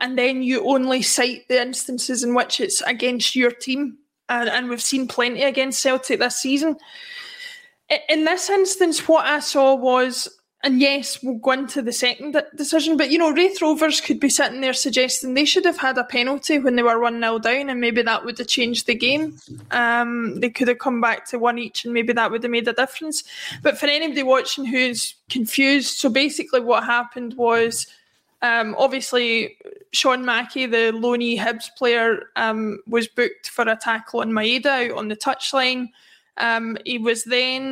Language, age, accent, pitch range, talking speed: English, 20-39, British, 235-275 Hz, 185 wpm